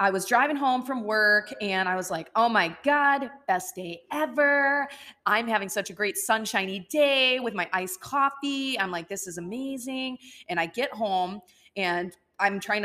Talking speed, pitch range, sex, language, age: 180 wpm, 170-215 Hz, female, English, 20-39